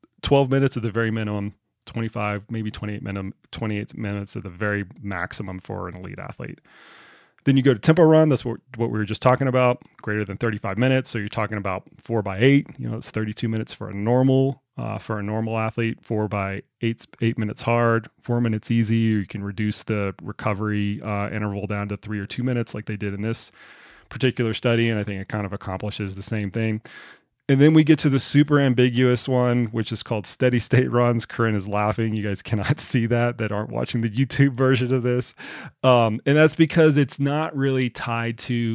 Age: 30-49